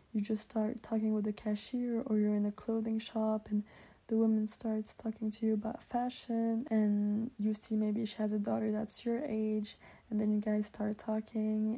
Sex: female